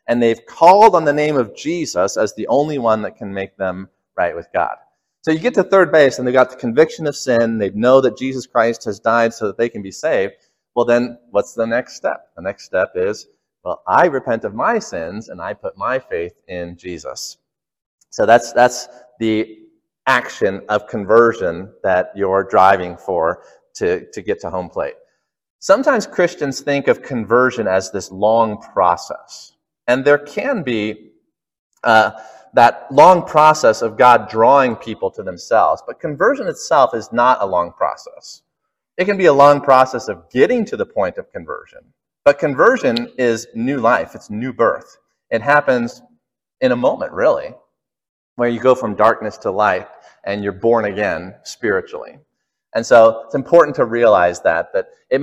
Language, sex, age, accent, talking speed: English, male, 30-49, American, 180 wpm